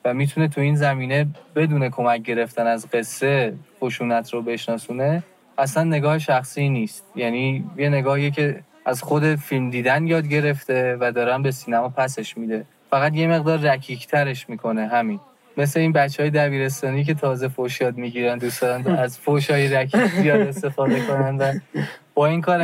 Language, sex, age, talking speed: Persian, male, 20-39, 160 wpm